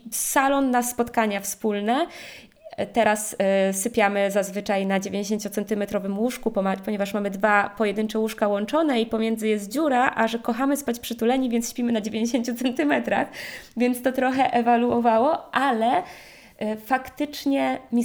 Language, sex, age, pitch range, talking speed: Polish, female, 20-39, 210-250 Hz, 125 wpm